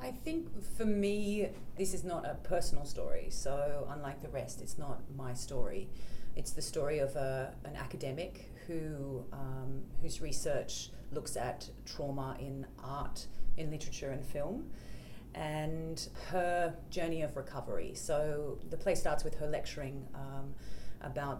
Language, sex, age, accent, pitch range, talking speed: English, female, 30-49, Australian, 130-150 Hz, 145 wpm